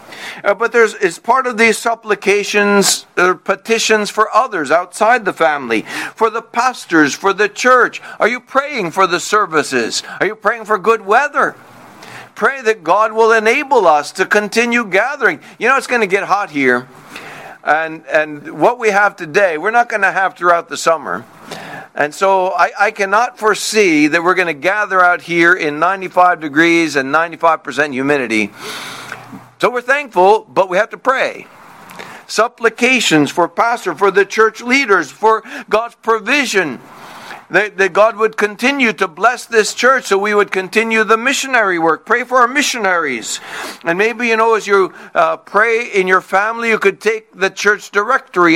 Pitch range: 180-230 Hz